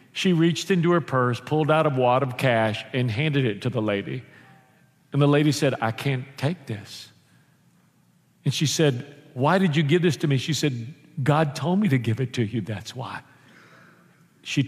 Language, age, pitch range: English, 50-69, 135-180 Hz